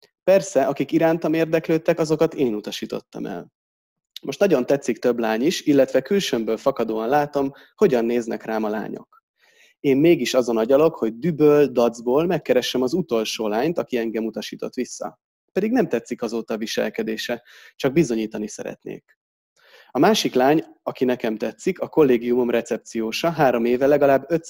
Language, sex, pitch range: Hungarian, male, 115-145 Hz